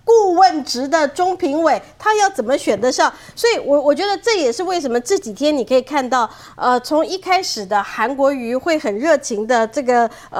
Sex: female